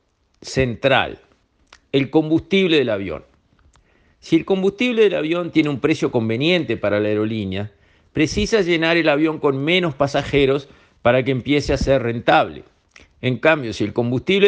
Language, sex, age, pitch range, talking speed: Spanish, male, 50-69, 120-165 Hz, 145 wpm